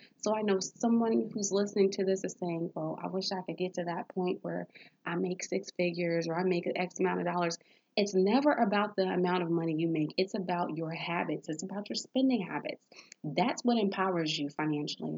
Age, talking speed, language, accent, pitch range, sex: 30-49, 220 wpm, English, American, 170-225 Hz, female